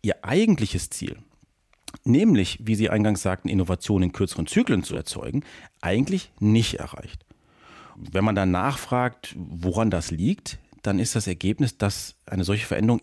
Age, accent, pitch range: 40-59, German, 95-120 Hz